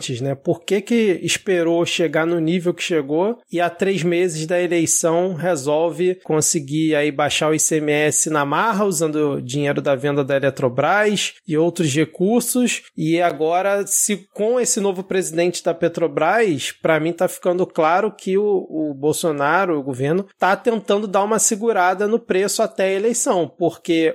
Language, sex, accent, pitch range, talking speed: Portuguese, male, Brazilian, 165-205 Hz, 160 wpm